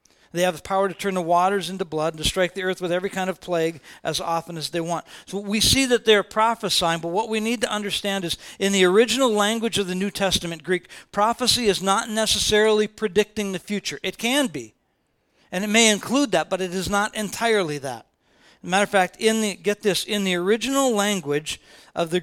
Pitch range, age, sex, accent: 185-225 Hz, 50-69, male, American